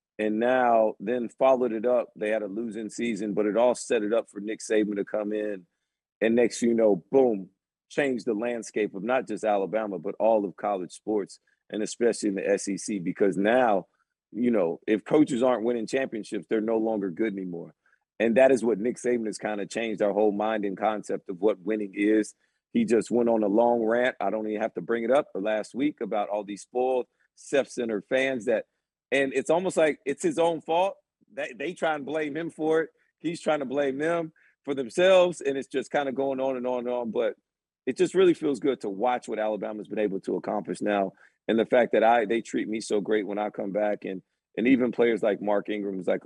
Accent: American